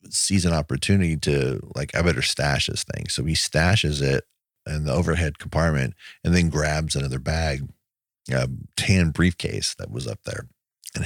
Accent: American